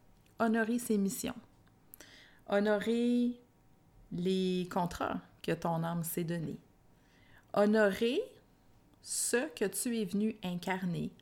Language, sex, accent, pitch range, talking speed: French, female, Canadian, 175-220 Hz, 95 wpm